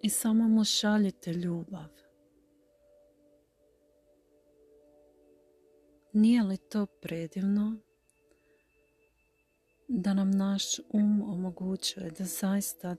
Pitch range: 125-195 Hz